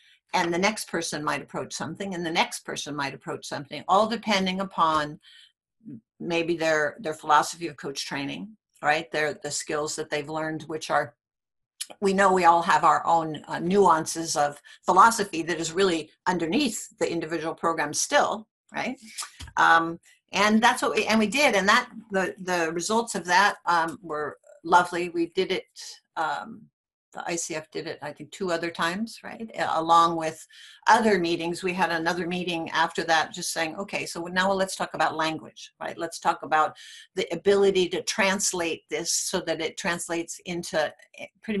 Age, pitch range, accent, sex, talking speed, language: 60-79, 165-220 Hz, American, female, 170 wpm, German